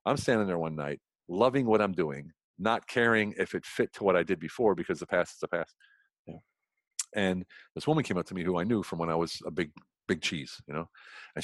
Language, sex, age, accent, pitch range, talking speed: English, male, 40-59, American, 105-160 Hz, 240 wpm